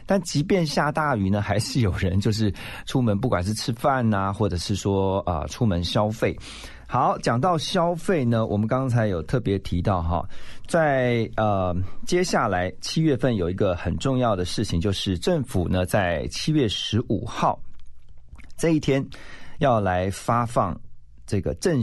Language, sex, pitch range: Chinese, male, 95-135 Hz